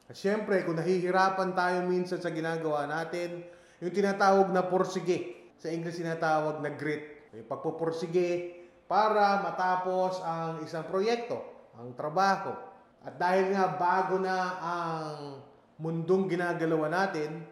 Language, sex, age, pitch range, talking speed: English, male, 20-39, 150-185 Hz, 120 wpm